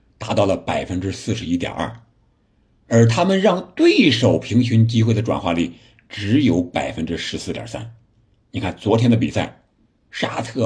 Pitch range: 110-130 Hz